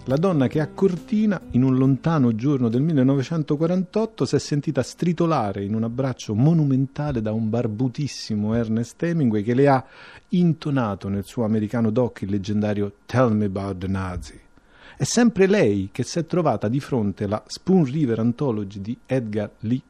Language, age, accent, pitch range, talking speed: Italian, 40-59, native, 110-150 Hz, 165 wpm